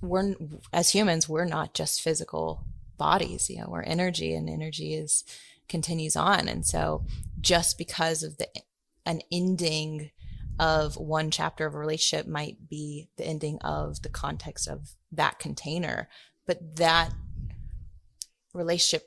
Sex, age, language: female, 20-39, English